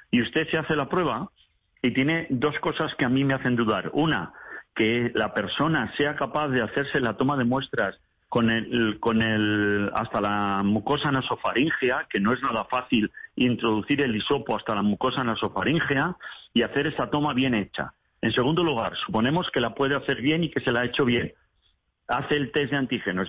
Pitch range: 115-150 Hz